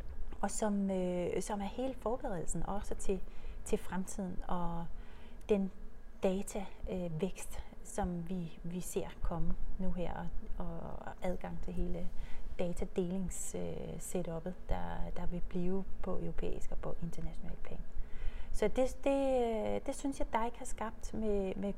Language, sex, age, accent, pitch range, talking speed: Danish, female, 30-49, native, 180-225 Hz, 140 wpm